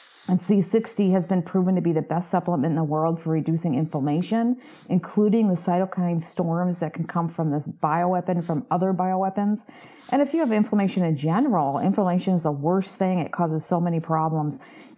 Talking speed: 190 wpm